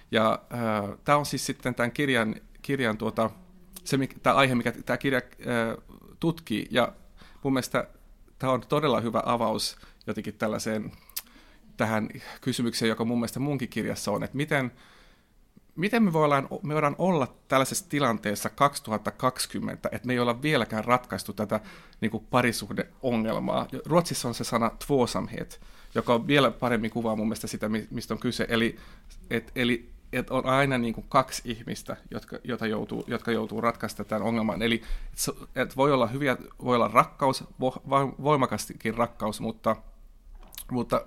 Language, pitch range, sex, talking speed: Finnish, 110-130 Hz, male, 145 wpm